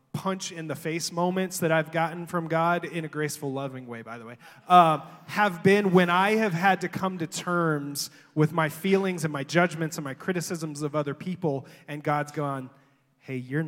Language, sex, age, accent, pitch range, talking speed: English, male, 30-49, American, 145-170 Hz, 190 wpm